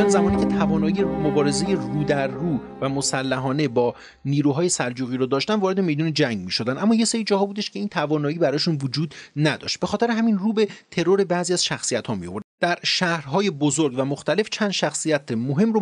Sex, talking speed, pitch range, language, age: male, 190 wpm, 135-195 Hz, Persian, 30-49